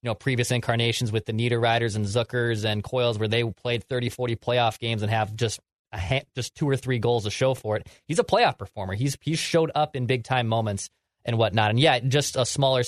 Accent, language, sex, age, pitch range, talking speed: American, English, male, 20-39, 120-145 Hz, 235 wpm